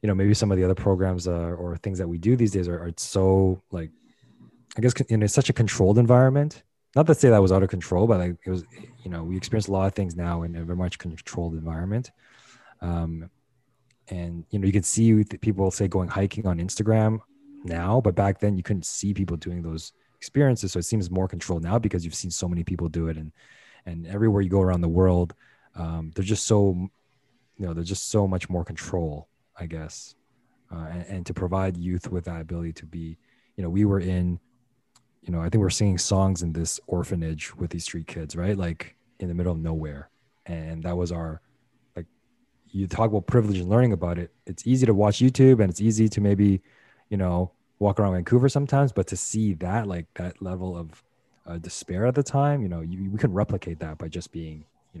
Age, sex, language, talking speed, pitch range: 20-39, male, English, 225 wpm, 85-105 Hz